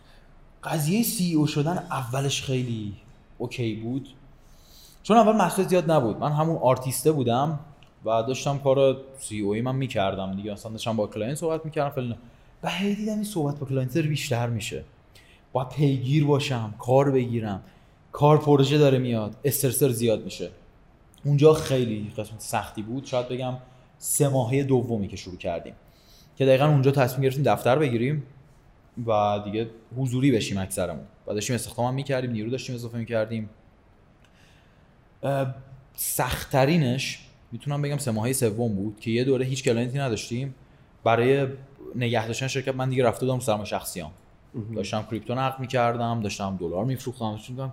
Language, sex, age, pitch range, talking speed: Persian, male, 20-39, 115-140 Hz, 145 wpm